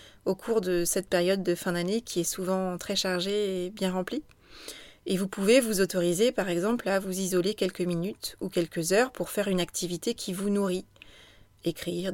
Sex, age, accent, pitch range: female, 30-49, French, 180-225 Hz